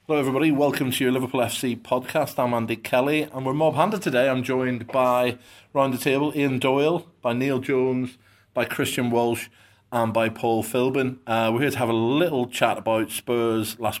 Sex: male